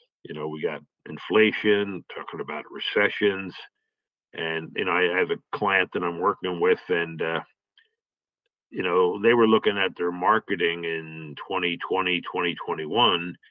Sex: male